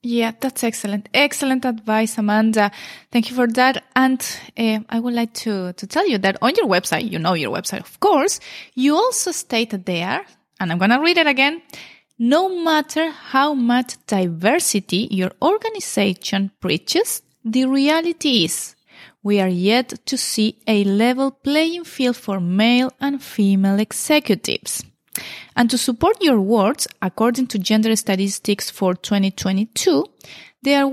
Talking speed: 150 wpm